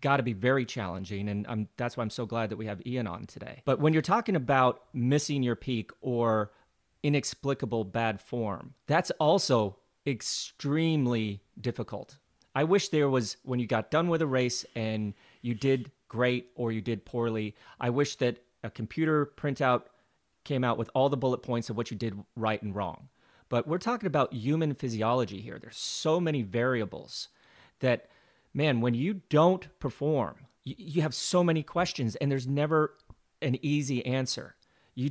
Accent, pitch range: American, 115-140 Hz